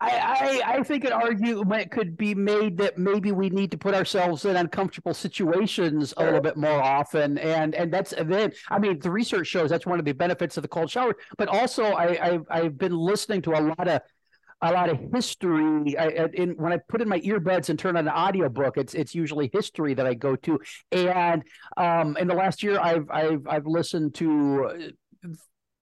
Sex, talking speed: male, 210 wpm